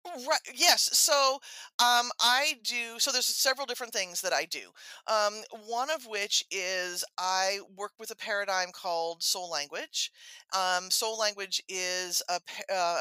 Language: English